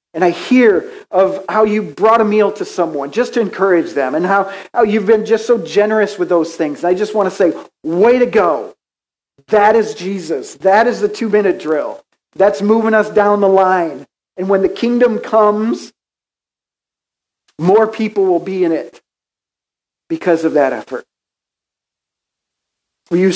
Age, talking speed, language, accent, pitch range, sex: 50-69, 165 wpm, English, American, 175-225 Hz, male